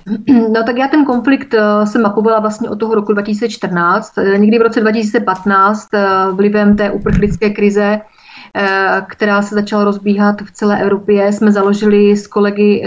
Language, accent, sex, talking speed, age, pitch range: Czech, native, female, 145 wpm, 30-49, 200-220 Hz